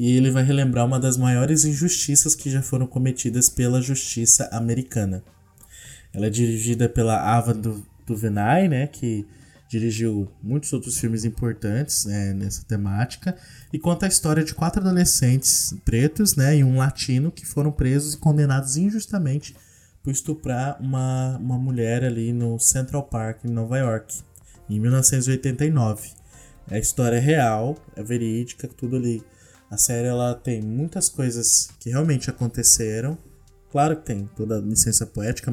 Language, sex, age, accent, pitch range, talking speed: Portuguese, male, 20-39, Brazilian, 115-150 Hz, 150 wpm